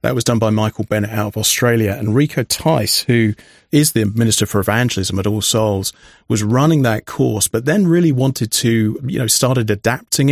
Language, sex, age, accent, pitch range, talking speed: English, male, 30-49, British, 110-130 Hz, 200 wpm